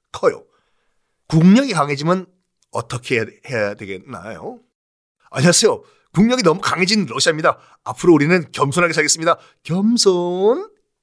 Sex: male